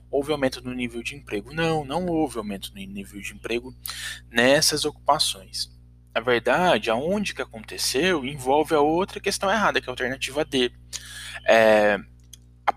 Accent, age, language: Brazilian, 20-39, Portuguese